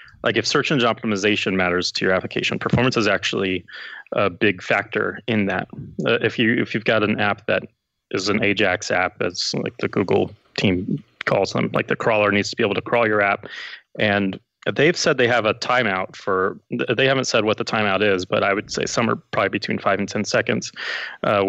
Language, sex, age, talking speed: English, male, 20-39, 220 wpm